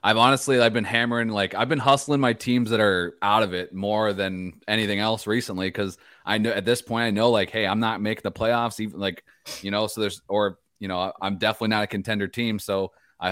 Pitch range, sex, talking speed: 95-115 Hz, male, 240 wpm